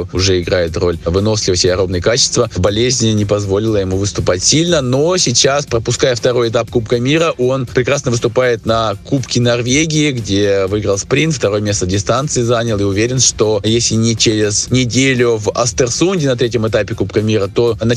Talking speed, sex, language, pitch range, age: 165 wpm, male, Russian, 110-135 Hz, 20-39